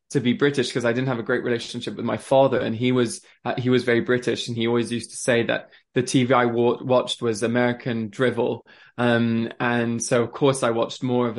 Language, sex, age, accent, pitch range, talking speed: English, male, 20-39, British, 120-135 Hz, 230 wpm